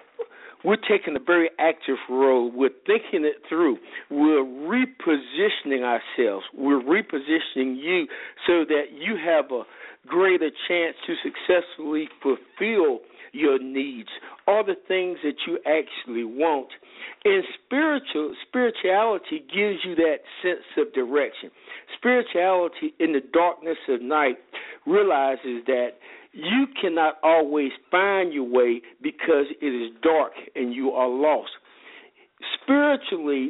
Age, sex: 50-69, male